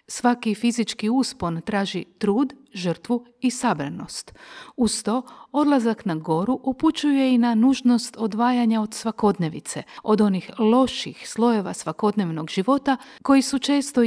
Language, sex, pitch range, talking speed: Croatian, female, 190-250 Hz, 125 wpm